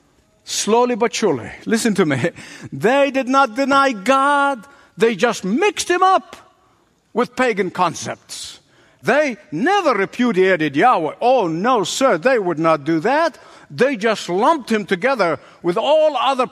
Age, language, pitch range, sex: 60-79, English, 170-255 Hz, male